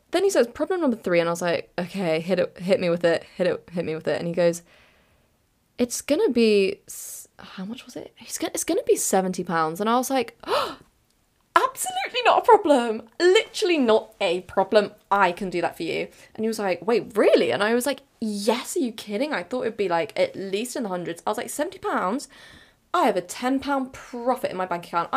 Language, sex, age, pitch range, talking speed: English, female, 20-39, 180-275 Hz, 235 wpm